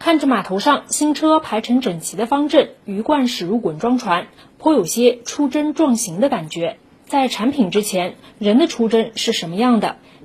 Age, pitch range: 20-39, 210-265 Hz